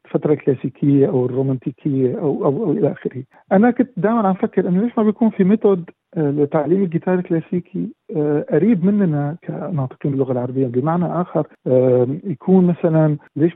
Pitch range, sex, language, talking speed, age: 130-170 Hz, male, Arabic, 140 wpm, 50-69